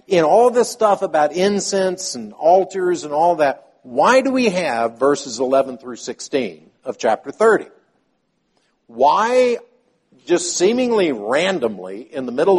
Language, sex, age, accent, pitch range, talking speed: English, male, 50-69, American, 135-195 Hz, 140 wpm